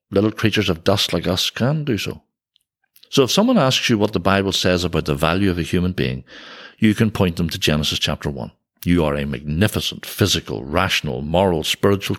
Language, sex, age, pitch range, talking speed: English, male, 60-79, 85-105 Hz, 200 wpm